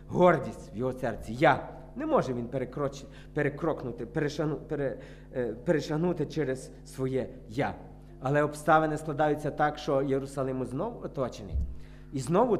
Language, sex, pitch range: Ukrainian, male, 125-165 Hz